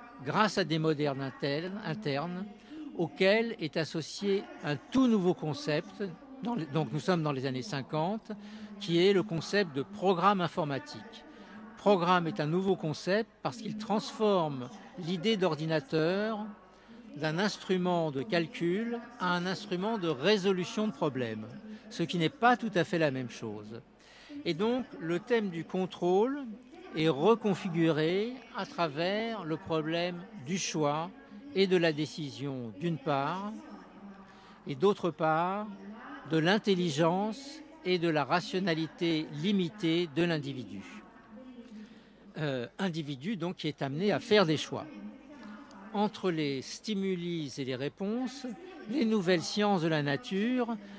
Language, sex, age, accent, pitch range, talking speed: Italian, male, 60-79, French, 160-215 Hz, 135 wpm